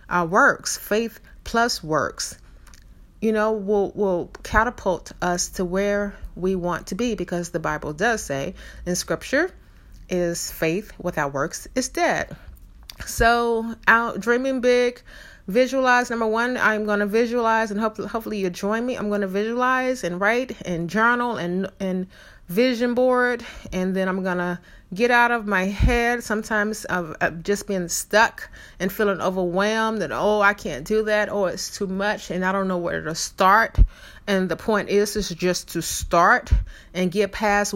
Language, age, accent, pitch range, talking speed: English, 30-49, American, 185-235 Hz, 165 wpm